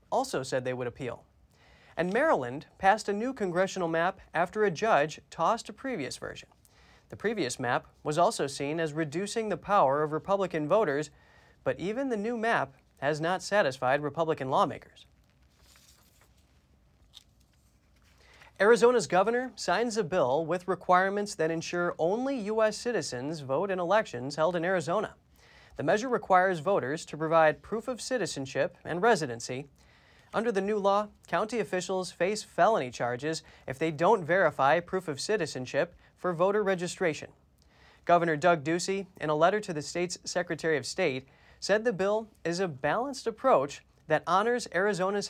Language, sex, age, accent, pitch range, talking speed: English, male, 30-49, American, 155-205 Hz, 150 wpm